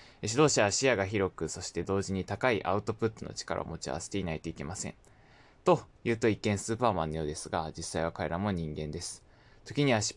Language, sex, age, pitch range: Japanese, male, 20-39, 95-115 Hz